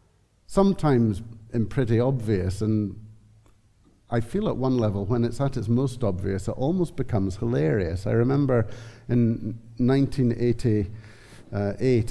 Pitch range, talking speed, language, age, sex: 100-120 Hz, 120 wpm, English, 50-69, male